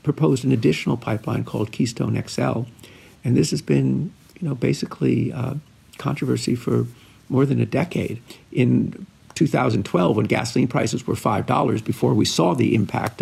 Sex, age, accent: male, 50-69, American